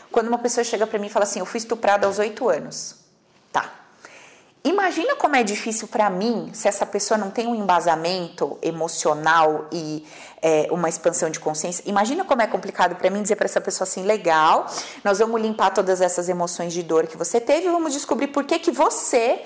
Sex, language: female, Portuguese